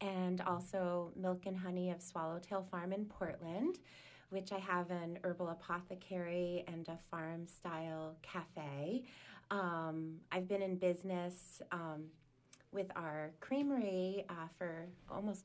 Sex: female